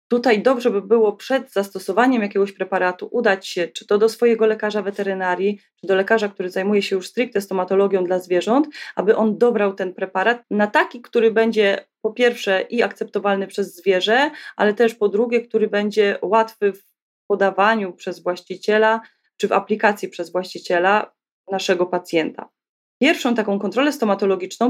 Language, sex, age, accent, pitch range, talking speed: Polish, female, 20-39, native, 185-225 Hz, 155 wpm